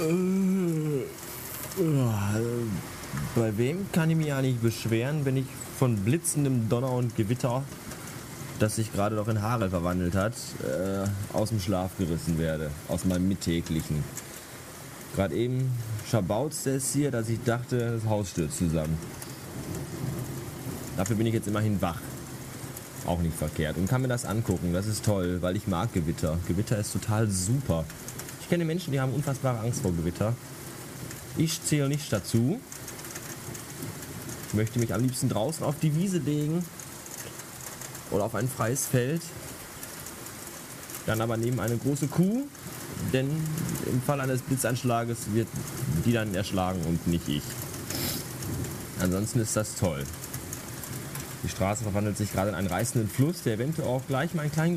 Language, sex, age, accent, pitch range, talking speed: German, male, 30-49, German, 105-140 Hz, 145 wpm